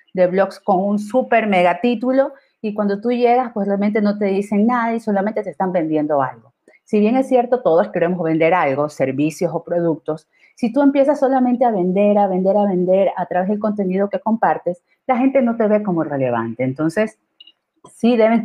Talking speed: 195 wpm